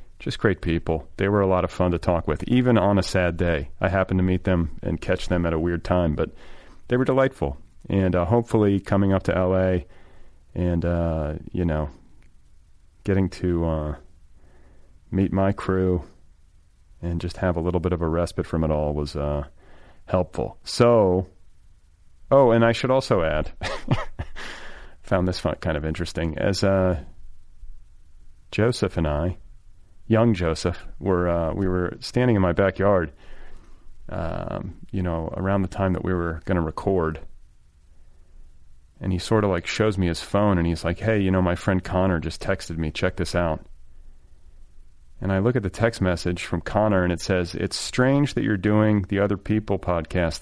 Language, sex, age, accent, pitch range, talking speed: English, male, 40-59, American, 80-100 Hz, 180 wpm